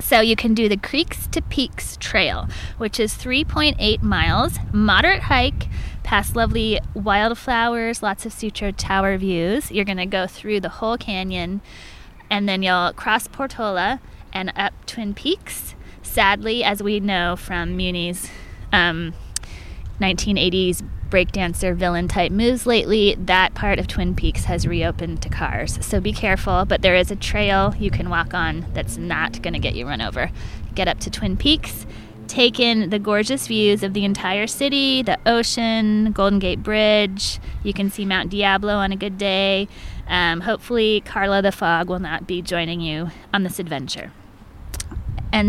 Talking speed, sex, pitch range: 160 wpm, female, 175-215 Hz